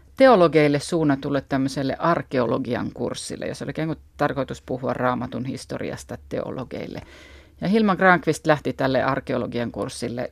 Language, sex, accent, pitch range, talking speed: Finnish, female, native, 135-160 Hz, 115 wpm